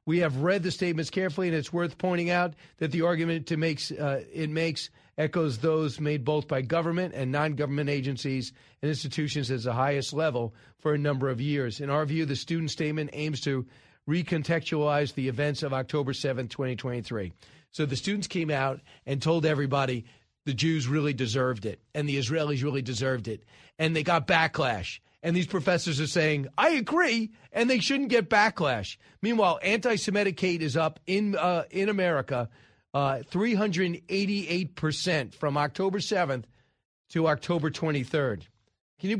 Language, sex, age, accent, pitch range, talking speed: English, male, 40-59, American, 140-180 Hz, 160 wpm